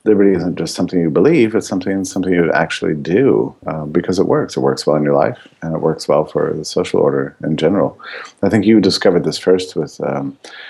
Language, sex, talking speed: English, male, 230 wpm